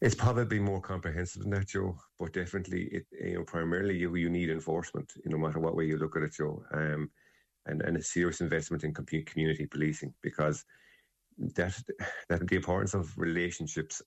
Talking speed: 190 wpm